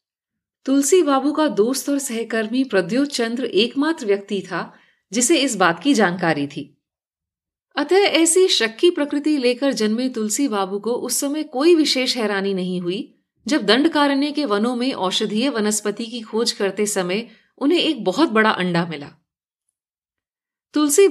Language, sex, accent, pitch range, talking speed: Hindi, female, native, 200-280 Hz, 145 wpm